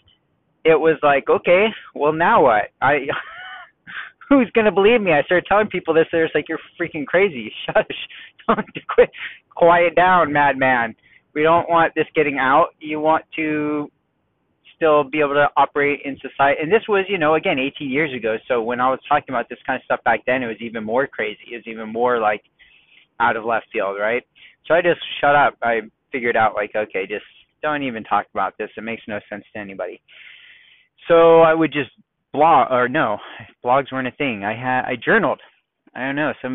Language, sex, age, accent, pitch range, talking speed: English, male, 20-39, American, 120-155 Hz, 200 wpm